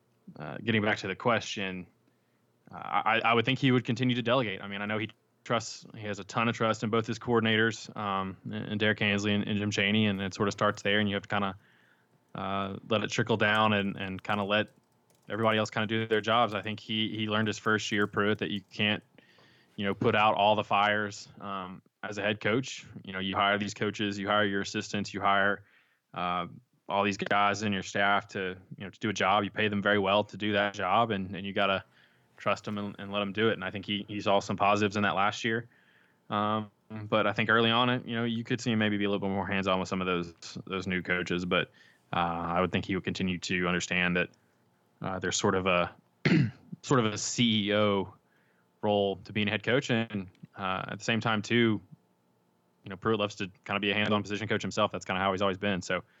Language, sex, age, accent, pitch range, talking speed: English, male, 20-39, American, 95-110 Hz, 250 wpm